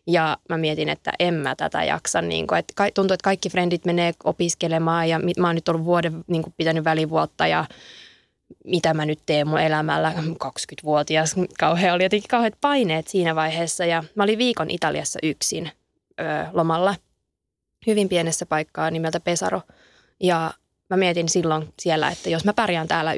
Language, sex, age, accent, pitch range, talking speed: Finnish, female, 20-39, native, 155-195 Hz, 165 wpm